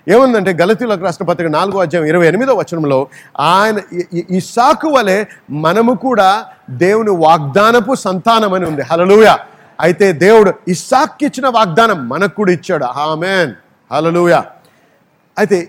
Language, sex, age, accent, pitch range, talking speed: Telugu, male, 50-69, native, 175-255 Hz, 120 wpm